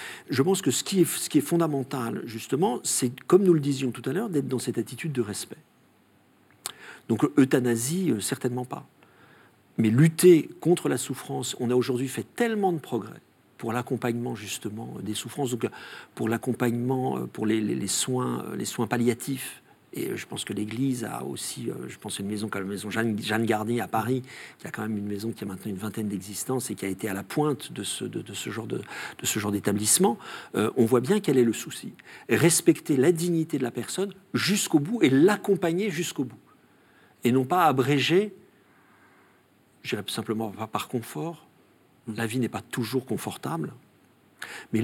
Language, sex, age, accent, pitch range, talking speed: French, male, 50-69, French, 110-150 Hz, 185 wpm